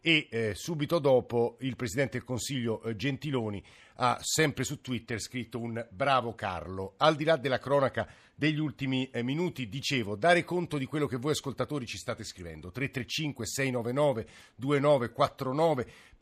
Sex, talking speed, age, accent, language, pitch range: male, 135 wpm, 50-69, native, Italian, 120-145 Hz